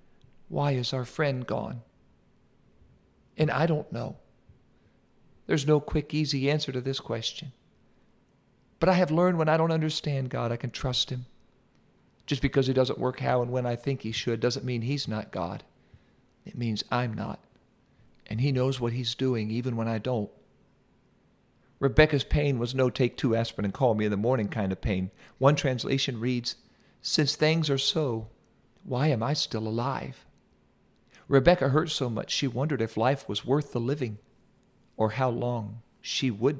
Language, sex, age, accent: English, male, 50-69, American